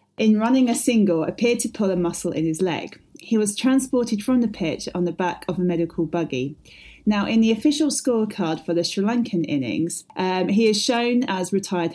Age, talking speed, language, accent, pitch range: 30-49, 205 wpm, English, British, 165-215 Hz